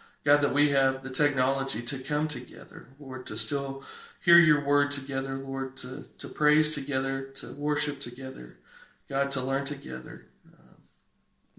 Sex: male